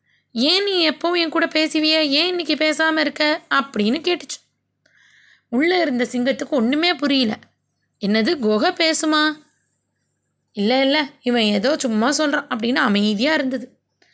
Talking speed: 125 wpm